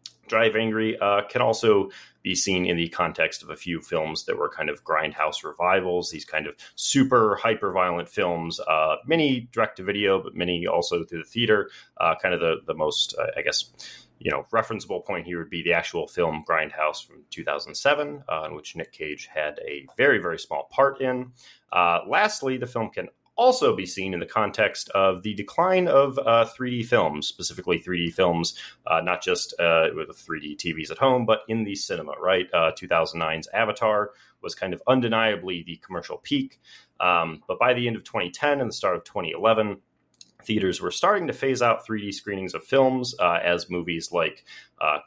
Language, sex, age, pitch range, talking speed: English, male, 30-49, 90-135 Hz, 195 wpm